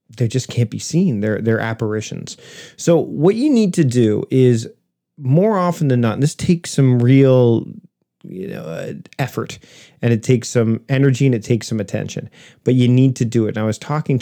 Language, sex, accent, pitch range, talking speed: English, male, American, 115-150 Hz, 205 wpm